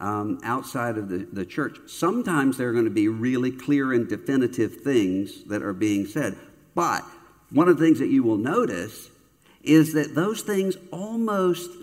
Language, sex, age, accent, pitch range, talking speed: English, male, 60-79, American, 115-155 Hz, 180 wpm